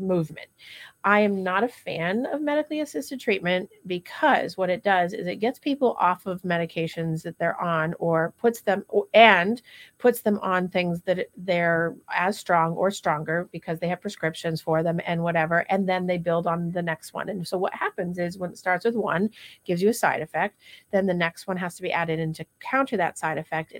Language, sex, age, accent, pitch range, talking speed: English, female, 30-49, American, 165-205 Hz, 210 wpm